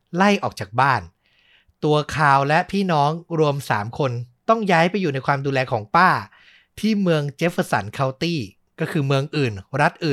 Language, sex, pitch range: Thai, male, 125-160 Hz